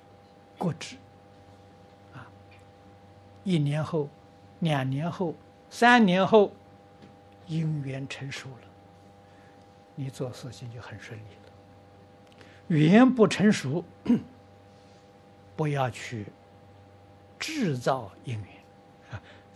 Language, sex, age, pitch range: Chinese, male, 60-79, 100-135 Hz